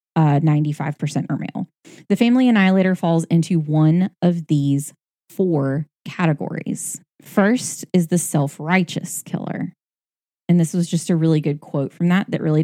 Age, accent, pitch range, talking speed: 20-39, American, 155-185 Hz, 140 wpm